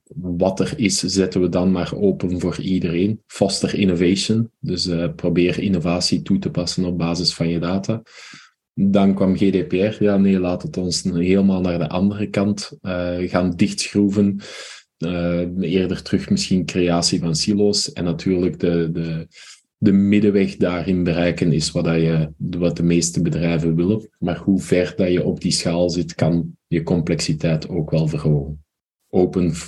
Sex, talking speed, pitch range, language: male, 160 wpm, 85-100 Hz, Dutch